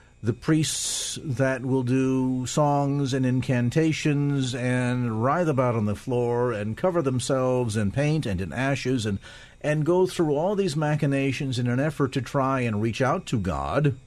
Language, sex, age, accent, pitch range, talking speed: English, male, 50-69, American, 110-150 Hz, 165 wpm